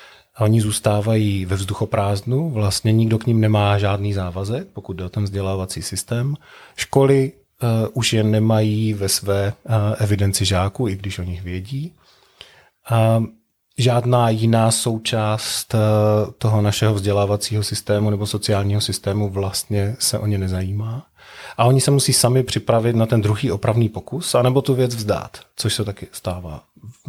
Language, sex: Czech, male